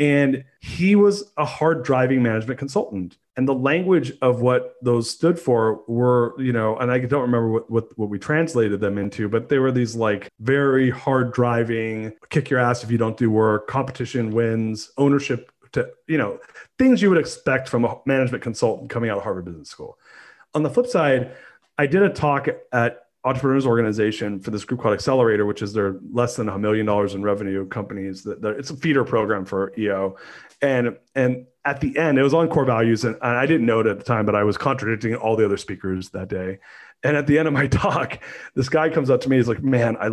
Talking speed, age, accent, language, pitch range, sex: 215 wpm, 40-59, American, English, 105-135 Hz, male